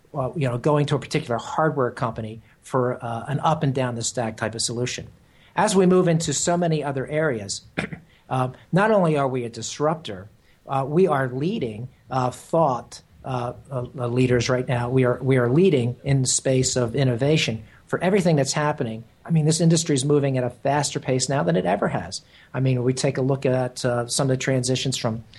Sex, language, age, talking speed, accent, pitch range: male, English, 50-69, 210 wpm, American, 120-145 Hz